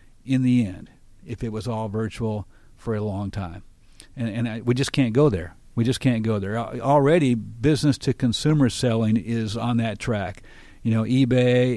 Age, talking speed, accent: 50-69, 185 wpm, American